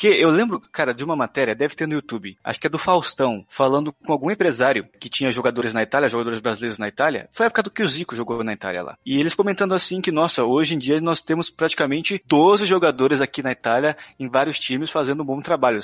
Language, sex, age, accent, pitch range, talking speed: Portuguese, male, 20-39, Brazilian, 130-180 Hz, 245 wpm